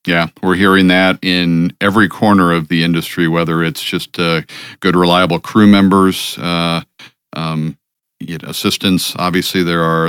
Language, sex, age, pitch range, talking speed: English, male, 50-69, 80-100 Hz, 155 wpm